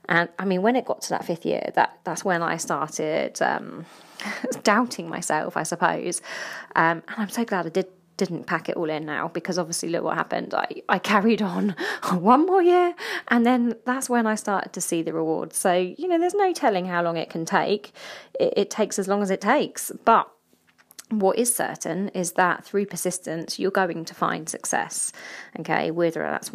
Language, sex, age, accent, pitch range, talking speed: English, female, 20-39, British, 180-230 Hz, 205 wpm